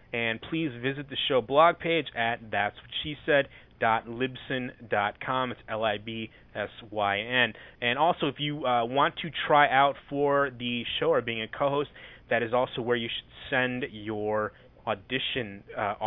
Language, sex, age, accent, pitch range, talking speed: English, male, 30-49, American, 110-145 Hz, 170 wpm